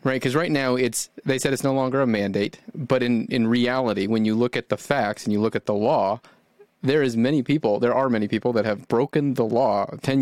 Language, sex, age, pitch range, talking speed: English, male, 30-49, 115-135 Hz, 245 wpm